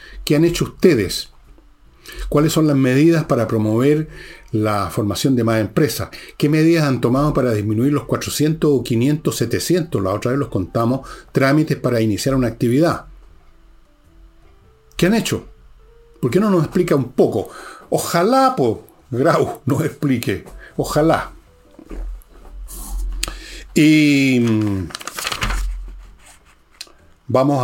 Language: Spanish